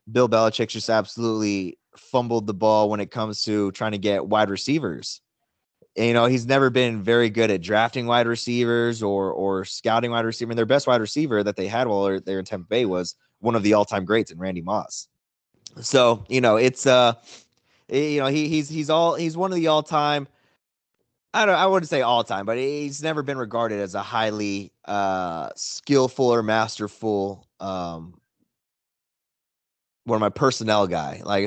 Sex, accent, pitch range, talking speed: male, American, 105-125 Hz, 185 wpm